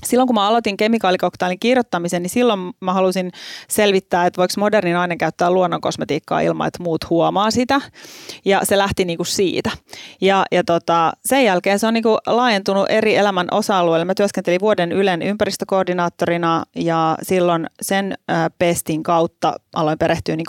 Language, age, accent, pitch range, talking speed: Finnish, 30-49, native, 170-200 Hz, 165 wpm